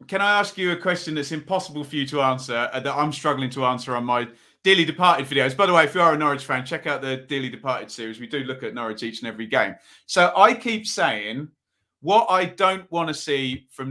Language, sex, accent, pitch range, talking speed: English, male, British, 135-175 Hz, 245 wpm